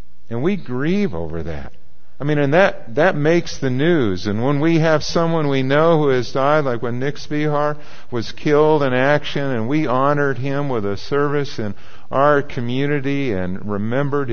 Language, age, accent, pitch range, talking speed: English, 50-69, American, 95-150 Hz, 180 wpm